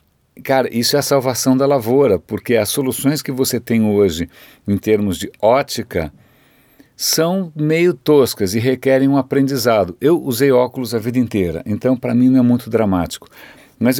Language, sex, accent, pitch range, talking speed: Portuguese, male, Brazilian, 110-145 Hz, 165 wpm